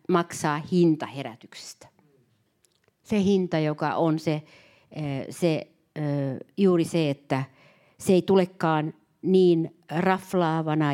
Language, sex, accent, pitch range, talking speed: Finnish, female, native, 145-180 Hz, 95 wpm